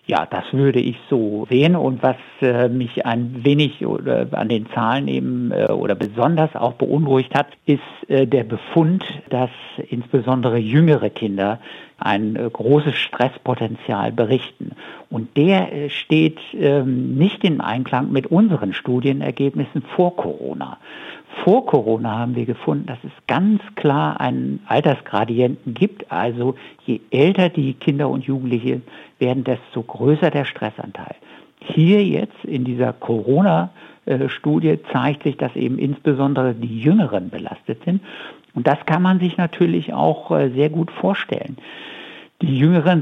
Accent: German